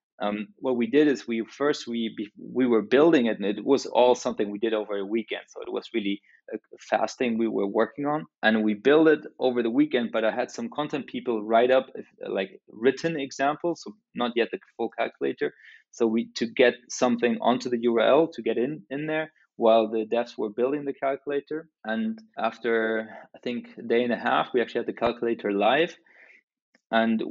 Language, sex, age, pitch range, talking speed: English, male, 20-39, 115-150 Hz, 200 wpm